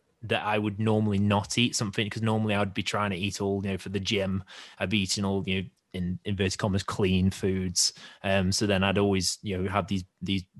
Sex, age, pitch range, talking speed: male, 20-39, 95-105 Hz, 230 wpm